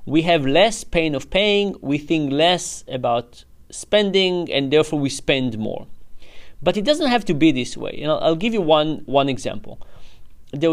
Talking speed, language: 180 wpm, English